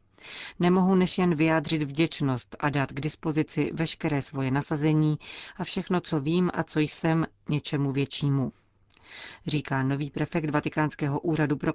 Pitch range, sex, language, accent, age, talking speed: 140-165 Hz, female, Czech, native, 40-59, 140 wpm